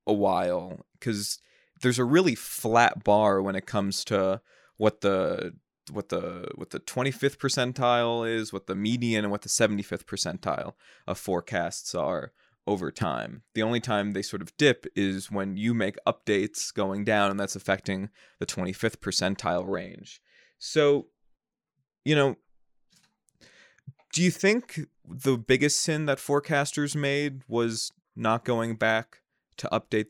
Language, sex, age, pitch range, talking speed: English, male, 20-39, 100-125 Hz, 145 wpm